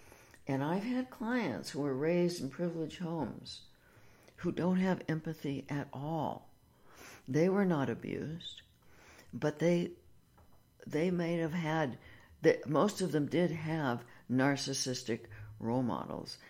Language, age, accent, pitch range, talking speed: English, 60-79, American, 115-155 Hz, 125 wpm